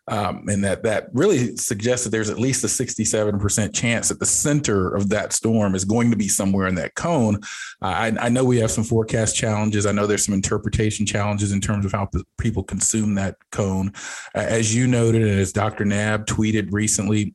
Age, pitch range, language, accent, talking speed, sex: 40-59, 105-125 Hz, English, American, 210 wpm, male